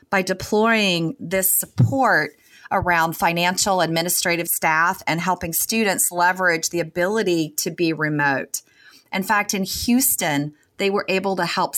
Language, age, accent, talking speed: English, 30-49, American, 130 wpm